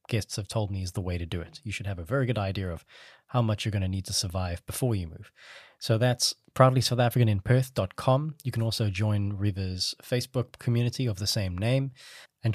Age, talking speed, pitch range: 20-39, 210 wpm, 100-120 Hz